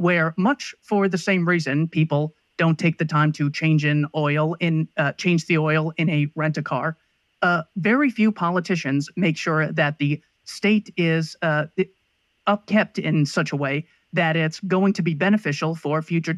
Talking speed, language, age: 170 wpm, English, 30-49